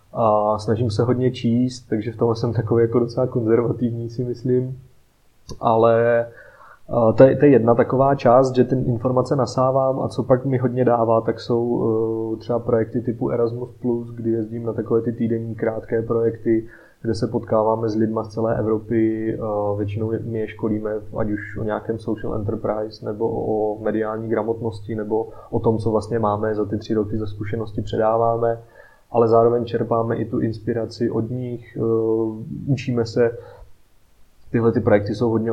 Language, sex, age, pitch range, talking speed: Czech, male, 20-39, 110-120 Hz, 165 wpm